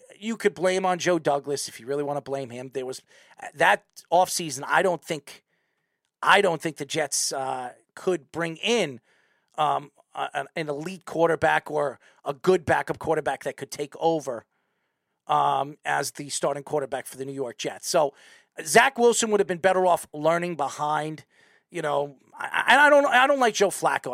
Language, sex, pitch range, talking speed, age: English, male, 150-195 Hz, 185 wpm, 40-59